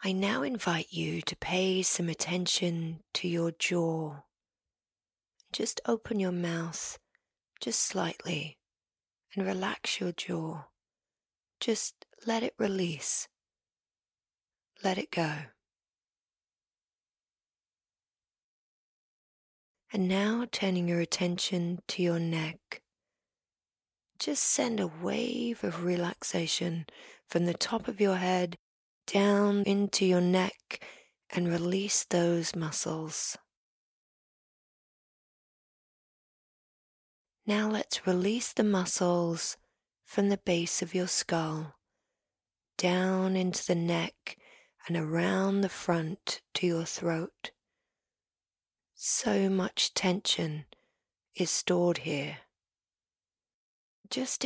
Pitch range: 165-195 Hz